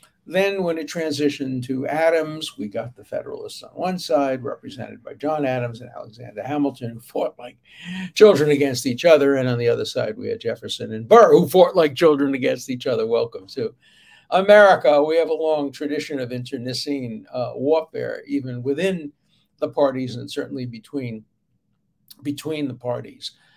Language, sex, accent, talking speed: English, male, American, 170 wpm